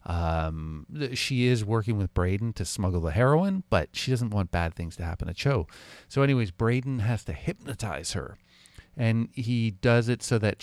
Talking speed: 185 wpm